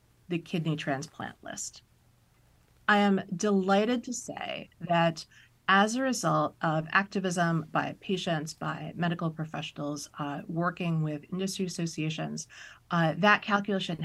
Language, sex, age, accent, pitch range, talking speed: English, female, 30-49, American, 155-200 Hz, 120 wpm